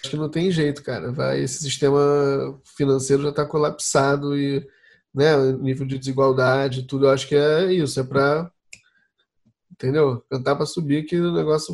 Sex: male